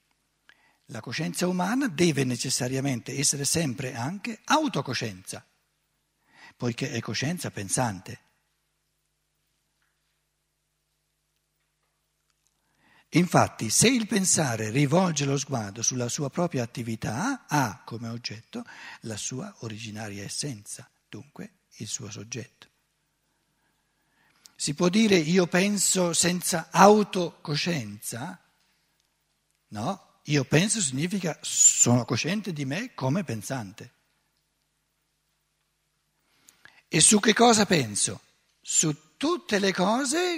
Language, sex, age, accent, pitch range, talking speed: Italian, male, 60-79, native, 125-190 Hz, 90 wpm